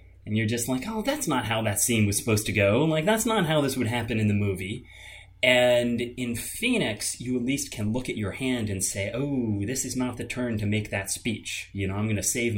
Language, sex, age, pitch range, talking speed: English, male, 30-49, 95-120 Hz, 255 wpm